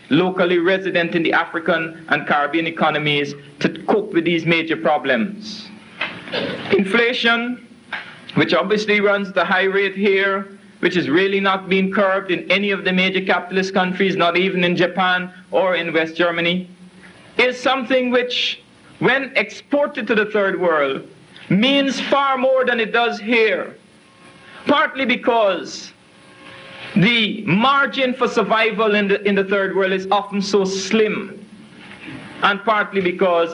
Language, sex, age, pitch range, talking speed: English, male, 60-79, 180-225 Hz, 140 wpm